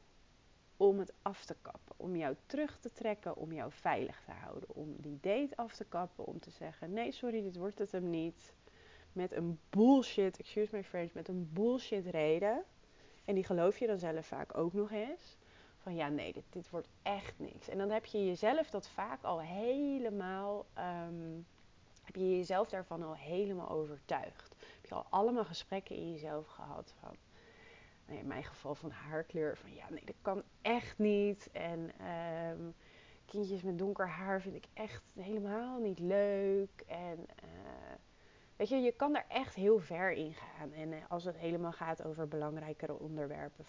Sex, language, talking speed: female, Dutch, 175 wpm